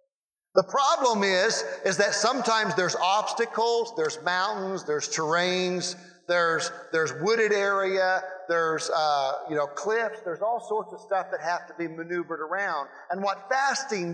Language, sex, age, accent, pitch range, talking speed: English, male, 50-69, American, 180-250 Hz, 150 wpm